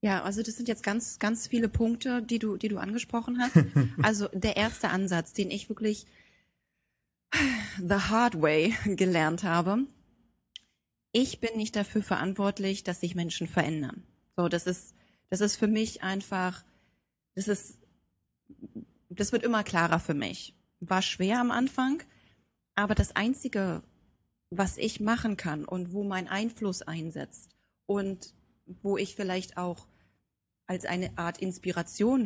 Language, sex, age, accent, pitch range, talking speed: German, female, 30-49, German, 170-220 Hz, 145 wpm